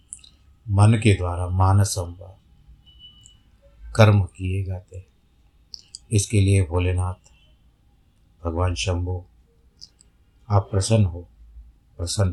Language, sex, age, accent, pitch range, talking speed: Hindi, male, 50-69, native, 90-105 Hz, 80 wpm